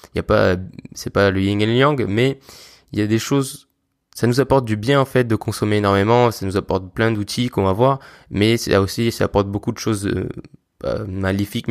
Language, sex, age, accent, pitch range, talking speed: French, male, 20-39, French, 100-120 Hz, 230 wpm